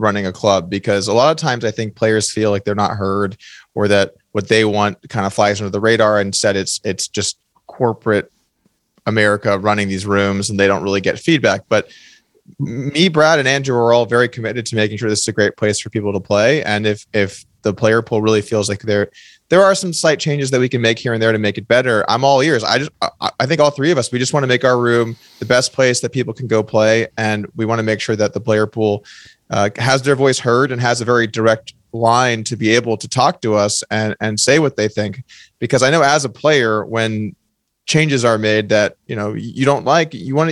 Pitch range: 105-135 Hz